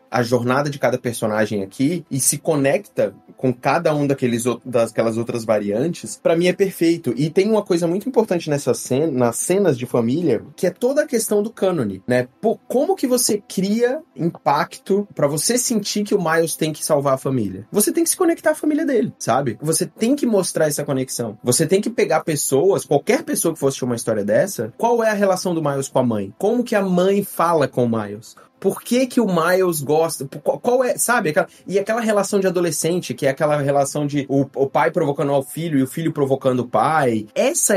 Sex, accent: male, Brazilian